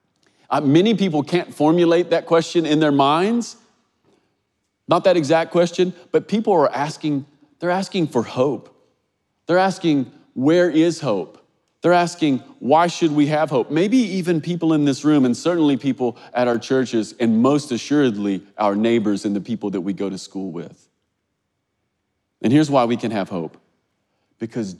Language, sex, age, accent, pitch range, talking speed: English, male, 30-49, American, 115-160 Hz, 165 wpm